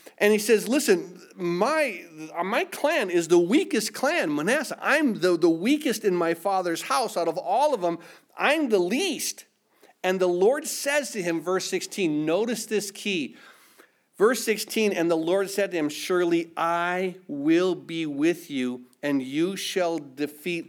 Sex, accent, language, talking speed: male, American, English, 165 wpm